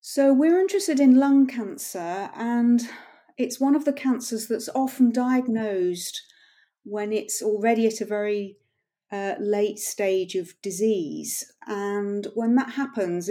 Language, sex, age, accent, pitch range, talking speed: English, female, 40-59, British, 180-245 Hz, 135 wpm